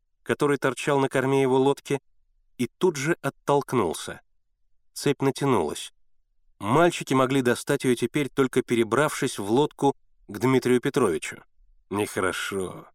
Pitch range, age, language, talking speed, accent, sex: 110-150 Hz, 30-49, Russian, 115 wpm, native, male